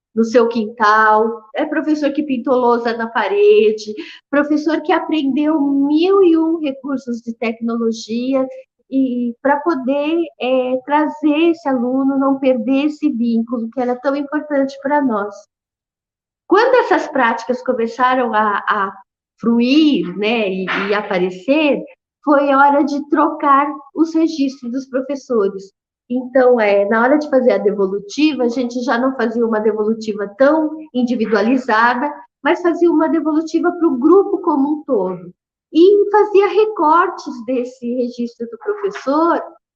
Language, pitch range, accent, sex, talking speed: Portuguese, 235-300 Hz, Brazilian, female, 130 wpm